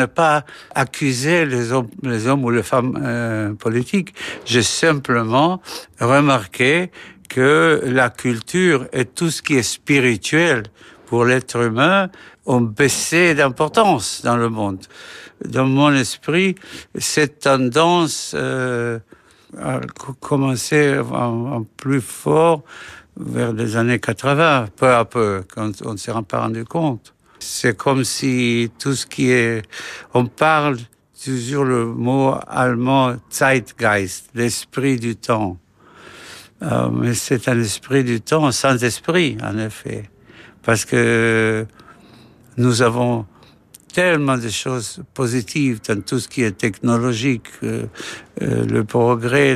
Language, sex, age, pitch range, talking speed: French, male, 60-79, 115-140 Hz, 130 wpm